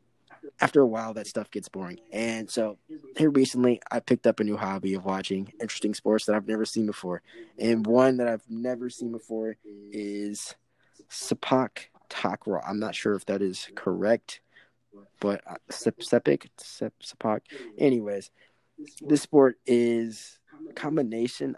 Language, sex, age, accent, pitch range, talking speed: English, male, 20-39, American, 105-130 Hz, 145 wpm